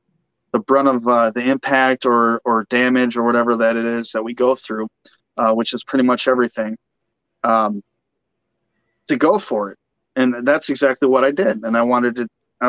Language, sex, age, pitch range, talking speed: English, male, 30-49, 115-130 Hz, 185 wpm